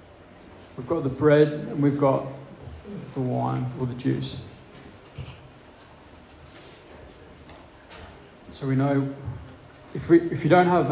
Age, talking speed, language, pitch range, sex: 20-39, 110 wpm, English, 125-140 Hz, male